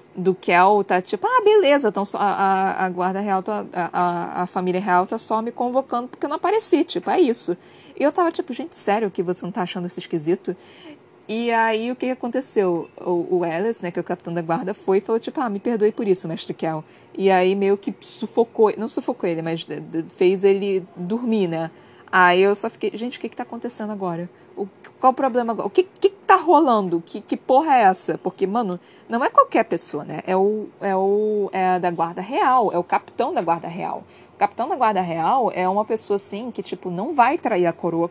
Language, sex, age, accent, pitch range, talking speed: Portuguese, female, 20-39, Brazilian, 180-240 Hz, 215 wpm